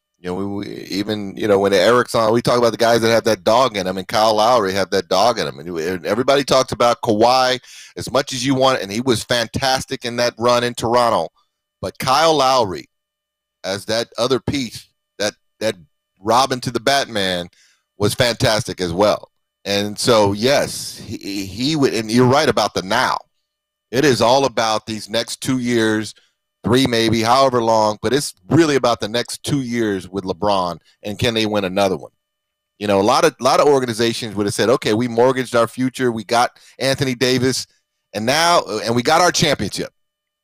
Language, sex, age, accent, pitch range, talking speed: English, male, 30-49, American, 105-135 Hz, 195 wpm